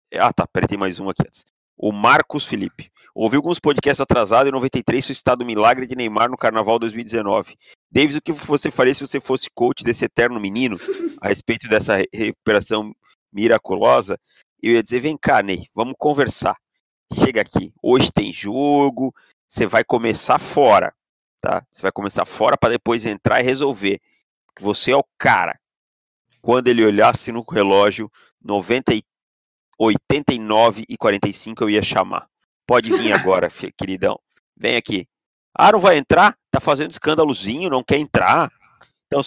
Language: Portuguese